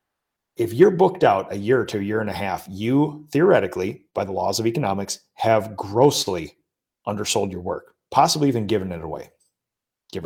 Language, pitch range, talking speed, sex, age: English, 105-140 Hz, 175 wpm, male, 30-49